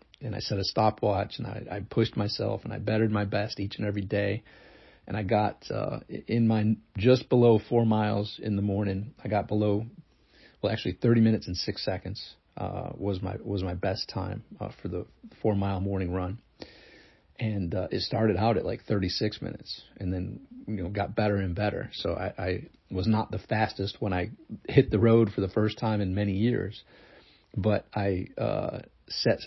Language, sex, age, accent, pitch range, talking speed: English, male, 40-59, American, 95-110 Hz, 195 wpm